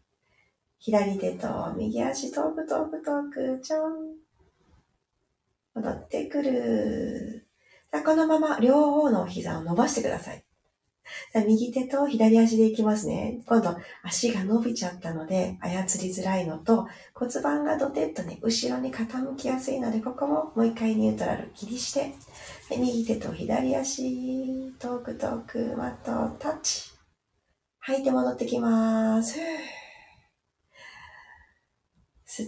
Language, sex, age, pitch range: Japanese, female, 40-59, 220-275 Hz